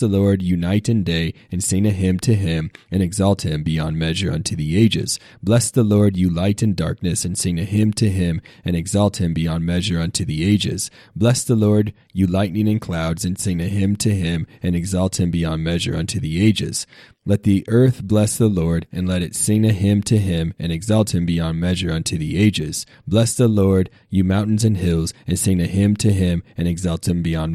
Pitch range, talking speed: 85-105 Hz, 220 wpm